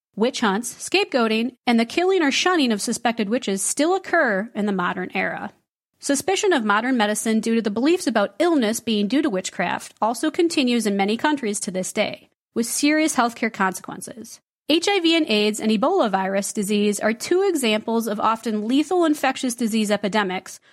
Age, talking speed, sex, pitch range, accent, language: 40-59, 170 wpm, female, 210-285 Hz, American, English